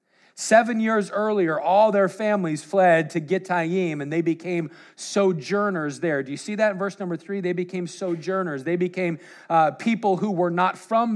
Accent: American